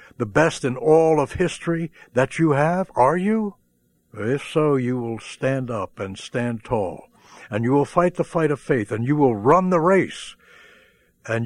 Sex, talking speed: male, 185 wpm